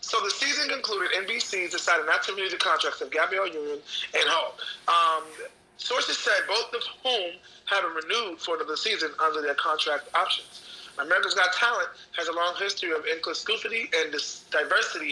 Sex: male